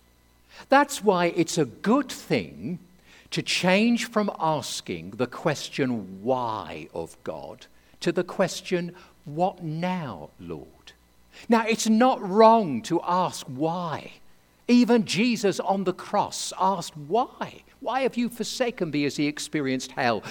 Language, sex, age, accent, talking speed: English, male, 50-69, British, 130 wpm